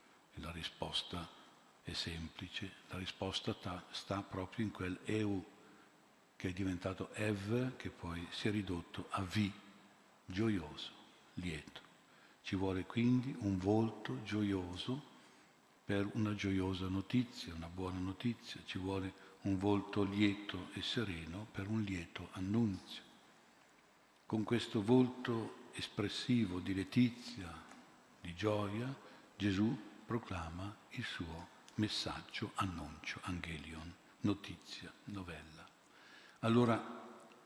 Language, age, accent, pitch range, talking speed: Italian, 50-69, native, 95-110 Hz, 105 wpm